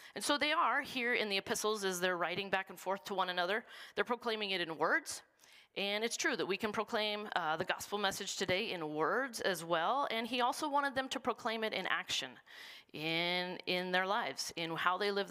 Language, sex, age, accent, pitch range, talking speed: English, female, 40-59, American, 180-235 Hz, 220 wpm